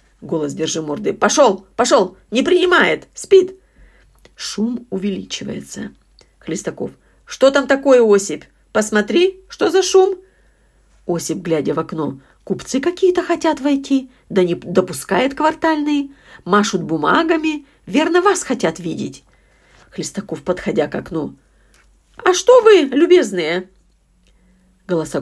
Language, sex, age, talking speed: Russian, female, 50-69, 110 wpm